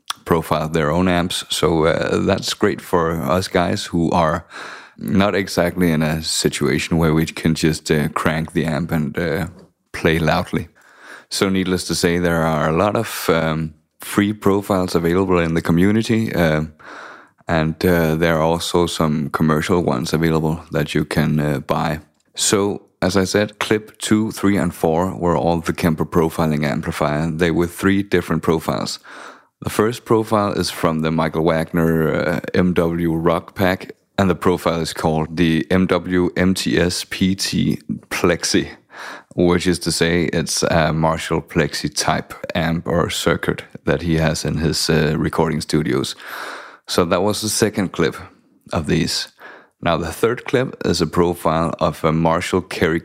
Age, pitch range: 30-49, 80-90 Hz